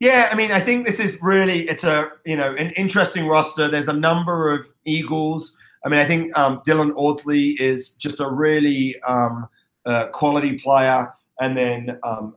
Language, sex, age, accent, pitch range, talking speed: English, male, 30-49, British, 130-160 Hz, 185 wpm